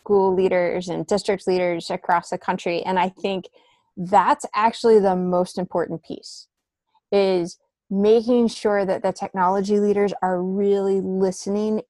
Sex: female